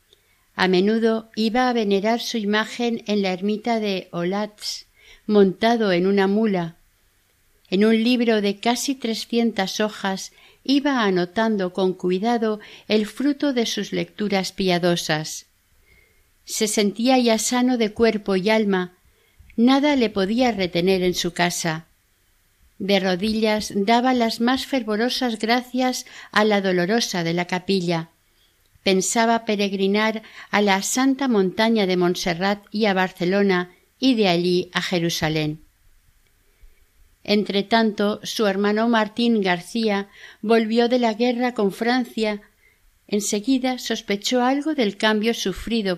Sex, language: female, Spanish